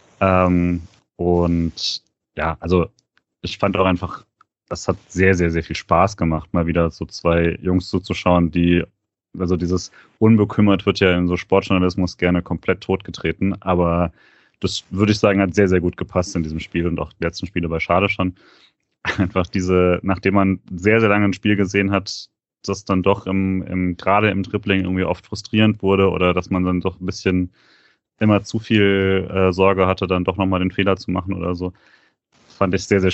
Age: 30-49